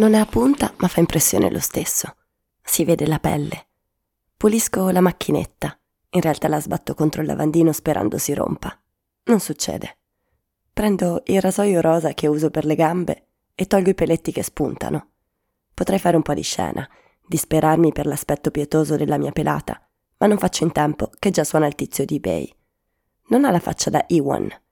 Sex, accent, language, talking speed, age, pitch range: female, native, Italian, 180 wpm, 20-39, 155-190 Hz